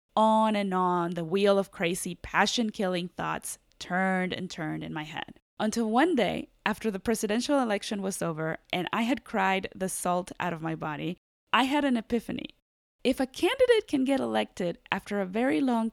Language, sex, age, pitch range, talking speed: English, female, 20-39, 185-255 Hz, 180 wpm